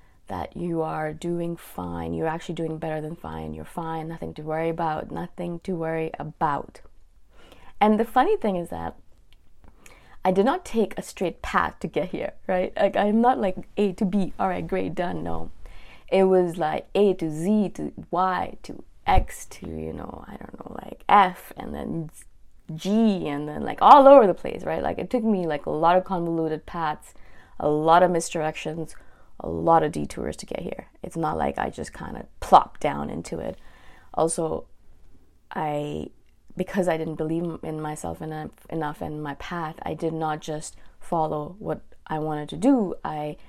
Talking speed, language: 185 wpm, English